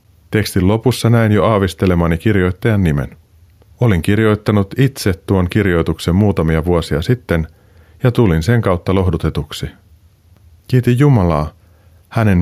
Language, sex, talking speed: Finnish, male, 110 wpm